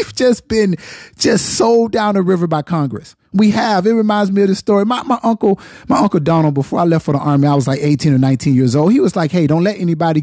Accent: American